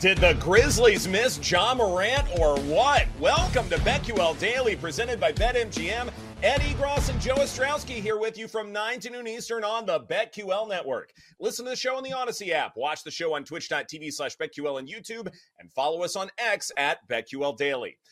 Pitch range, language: 155-235 Hz, English